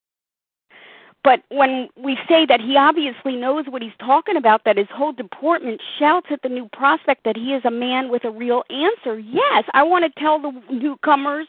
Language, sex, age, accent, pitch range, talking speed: English, female, 50-69, American, 235-305 Hz, 195 wpm